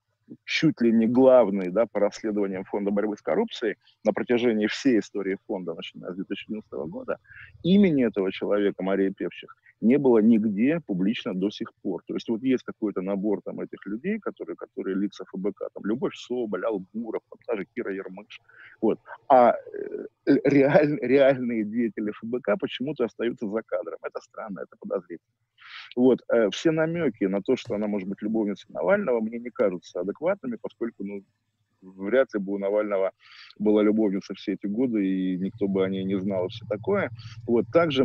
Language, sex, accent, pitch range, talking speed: Russian, male, native, 100-125 Hz, 165 wpm